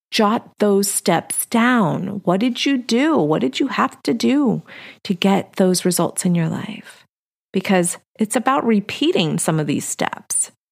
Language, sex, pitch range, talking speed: English, female, 170-225 Hz, 160 wpm